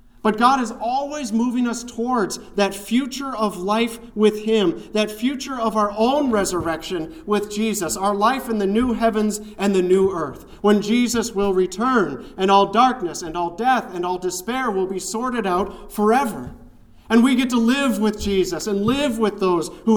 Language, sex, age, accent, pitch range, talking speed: English, male, 40-59, American, 170-235 Hz, 185 wpm